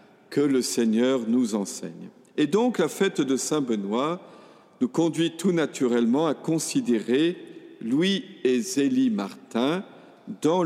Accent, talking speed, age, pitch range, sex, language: French, 125 wpm, 50-69, 140-195 Hz, male, French